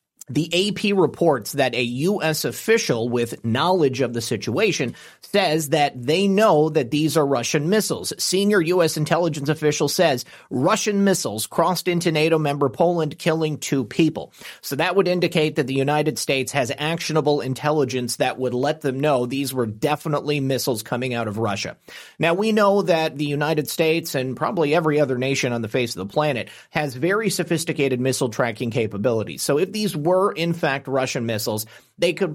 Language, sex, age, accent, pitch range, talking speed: English, male, 30-49, American, 130-165 Hz, 175 wpm